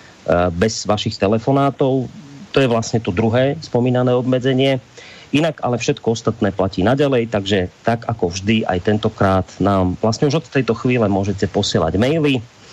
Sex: male